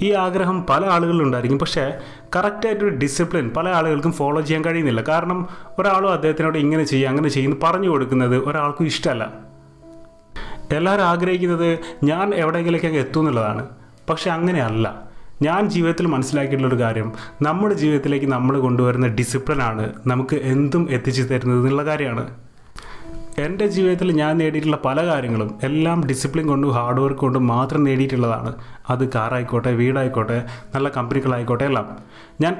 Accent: native